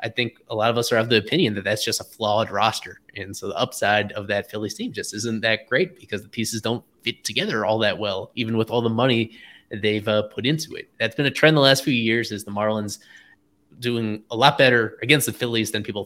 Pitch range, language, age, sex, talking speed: 110-125 Hz, English, 20-39, male, 250 wpm